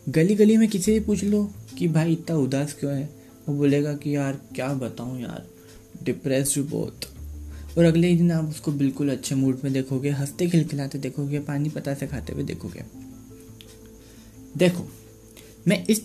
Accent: native